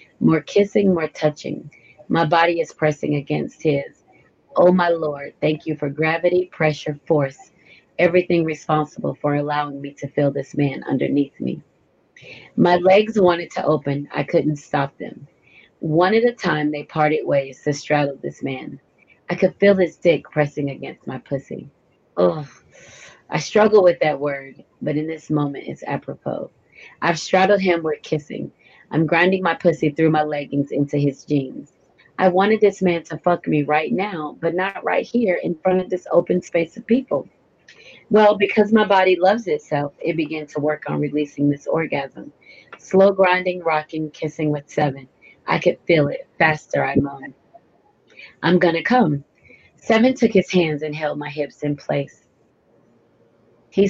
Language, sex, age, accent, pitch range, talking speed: English, female, 30-49, American, 145-185 Hz, 165 wpm